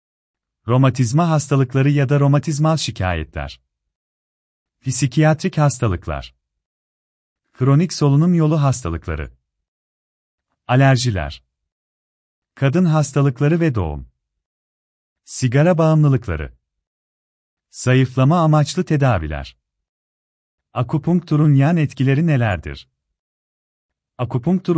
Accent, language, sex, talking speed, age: native, Turkish, male, 65 wpm, 40-59